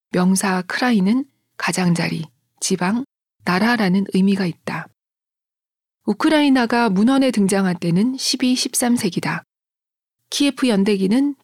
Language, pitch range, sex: Korean, 185-245 Hz, female